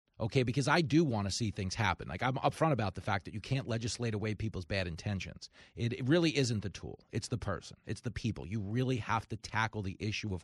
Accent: American